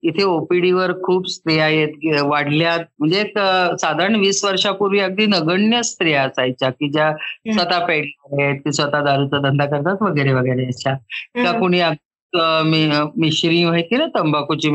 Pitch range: 145-185 Hz